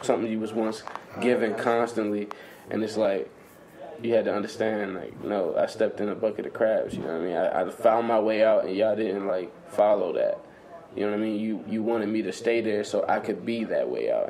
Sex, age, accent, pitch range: male, 20-39, American, 105-120 Hz